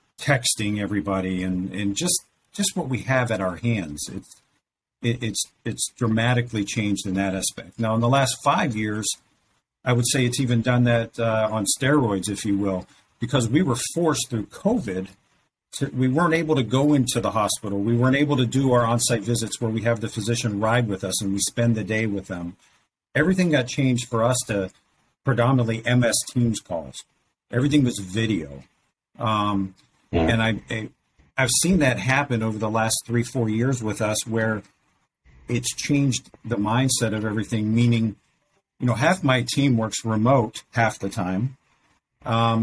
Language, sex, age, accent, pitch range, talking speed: English, male, 50-69, American, 110-130 Hz, 175 wpm